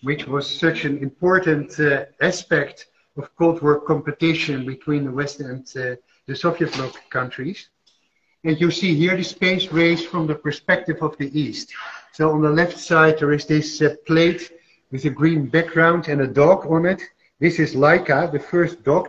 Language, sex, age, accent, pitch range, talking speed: English, male, 50-69, Dutch, 145-170 Hz, 180 wpm